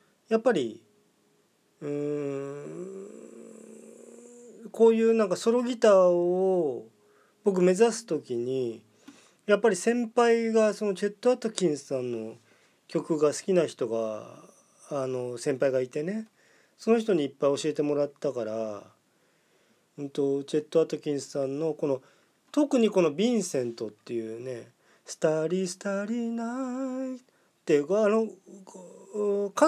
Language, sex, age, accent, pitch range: Japanese, male, 40-59, native, 140-225 Hz